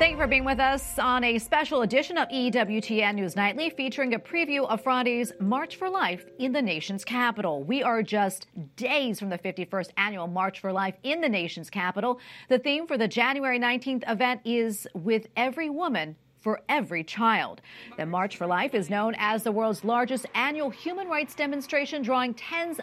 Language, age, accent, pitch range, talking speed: English, 40-59, American, 200-270 Hz, 185 wpm